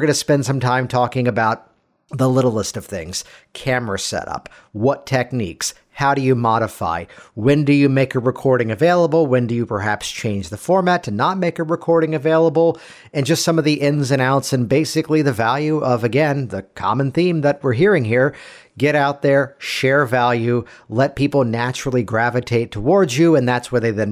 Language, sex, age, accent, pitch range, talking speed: English, male, 50-69, American, 110-140 Hz, 190 wpm